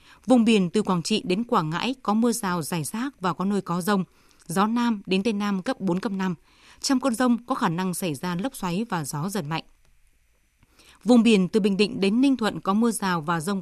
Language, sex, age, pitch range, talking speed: Vietnamese, female, 20-39, 180-230 Hz, 240 wpm